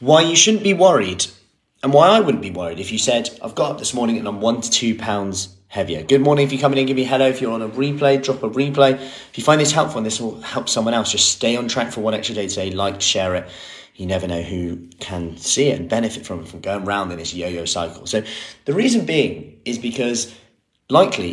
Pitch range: 90-120 Hz